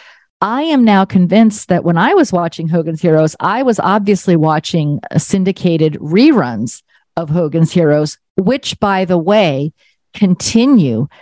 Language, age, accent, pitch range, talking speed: English, 50-69, American, 160-205 Hz, 135 wpm